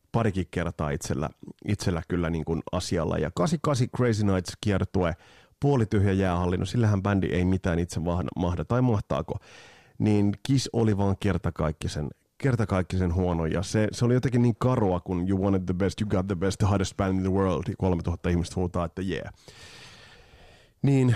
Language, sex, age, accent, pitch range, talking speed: Finnish, male, 30-49, native, 90-120 Hz, 170 wpm